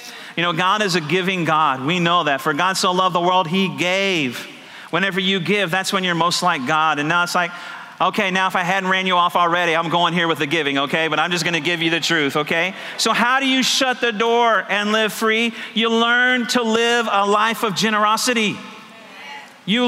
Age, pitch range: 40-59, 190-235 Hz